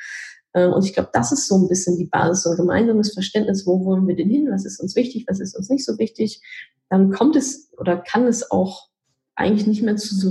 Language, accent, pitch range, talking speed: German, German, 190-230 Hz, 240 wpm